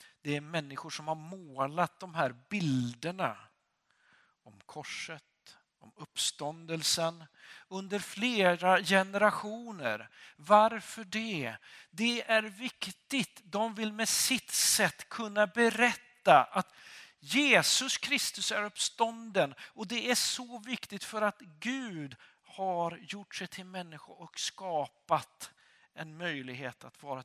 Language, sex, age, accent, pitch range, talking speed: Swedish, male, 50-69, native, 155-205 Hz, 110 wpm